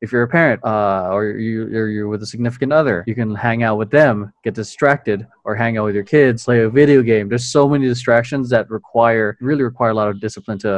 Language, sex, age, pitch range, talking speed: English, male, 20-39, 110-125 Hz, 245 wpm